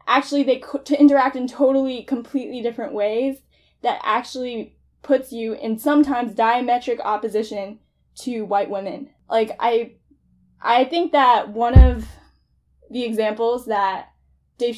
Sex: female